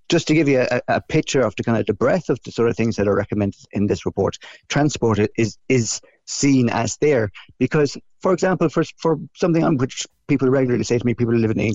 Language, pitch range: English, 105-130 Hz